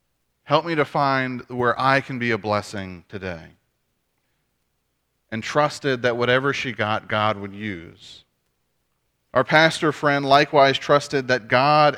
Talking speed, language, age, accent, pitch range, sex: 135 wpm, English, 30-49, American, 105-135 Hz, male